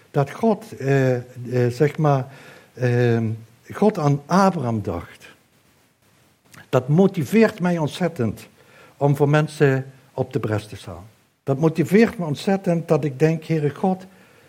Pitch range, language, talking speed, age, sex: 130-155 Hz, Dutch, 130 wpm, 60-79, male